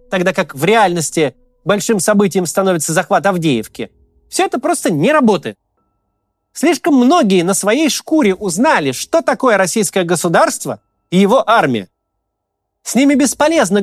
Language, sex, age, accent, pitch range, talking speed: Russian, male, 30-49, native, 175-250 Hz, 130 wpm